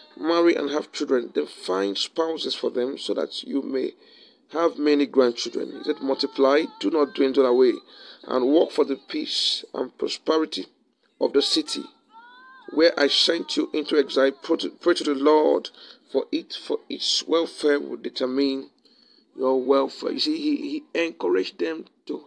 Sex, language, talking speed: male, English, 160 wpm